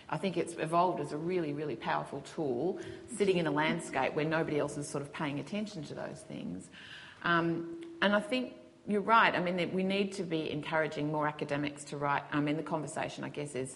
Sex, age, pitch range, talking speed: female, 30-49, 140-170 Hz, 215 wpm